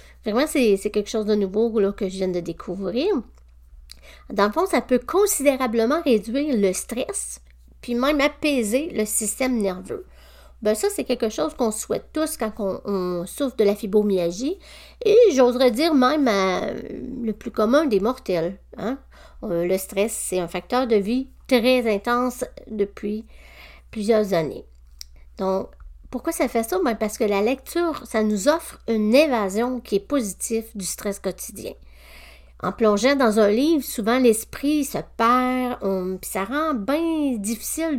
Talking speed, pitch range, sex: 155 wpm, 195-255 Hz, female